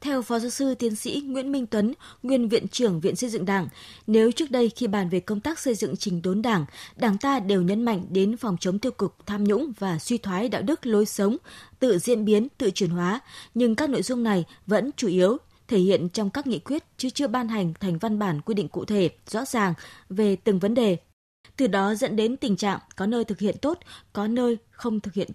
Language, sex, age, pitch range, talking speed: Vietnamese, female, 20-39, 185-245 Hz, 240 wpm